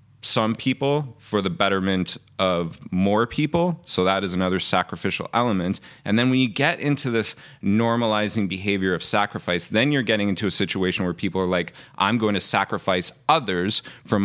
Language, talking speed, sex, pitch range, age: English, 175 wpm, male, 95-120 Hz, 30-49